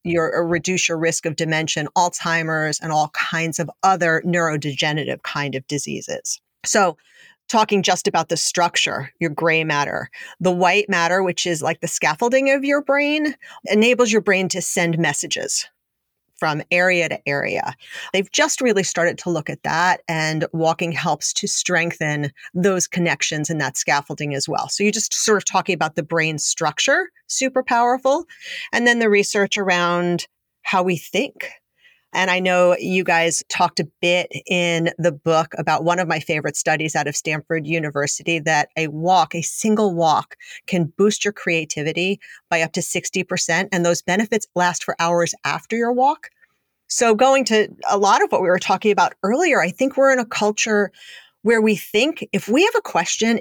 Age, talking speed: 40-59, 175 wpm